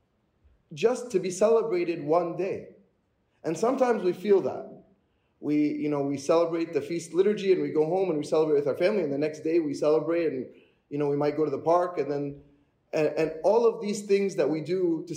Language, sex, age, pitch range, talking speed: English, male, 20-39, 155-215 Hz, 220 wpm